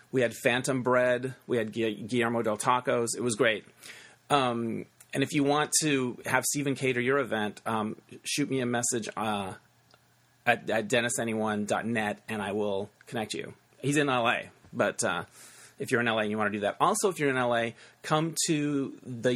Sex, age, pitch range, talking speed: male, 30-49, 110-130 Hz, 185 wpm